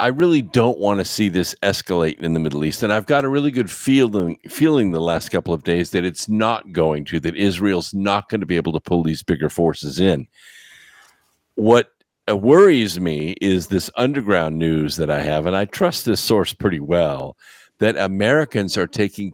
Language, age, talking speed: English, 50-69, 200 wpm